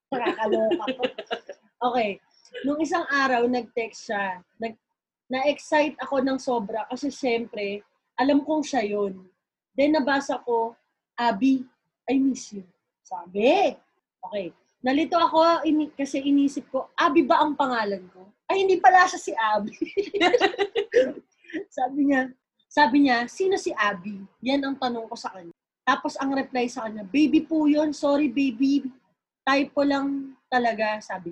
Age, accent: 20-39, native